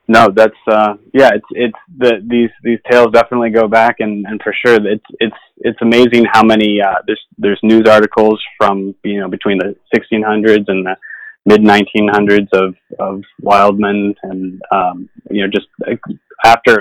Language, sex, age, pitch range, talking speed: English, male, 20-39, 105-115 Hz, 170 wpm